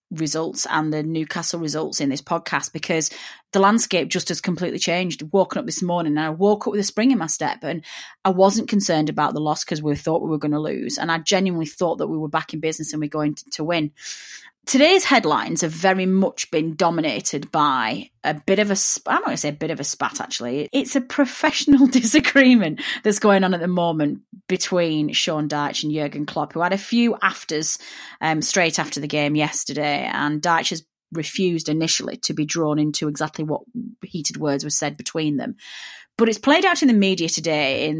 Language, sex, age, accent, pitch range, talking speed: English, female, 30-49, British, 150-195 Hz, 215 wpm